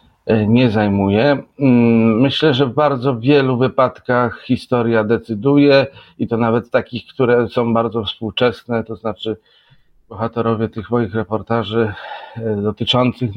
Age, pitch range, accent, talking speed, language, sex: 40-59, 105-120 Hz, native, 110 wpm, Polish, male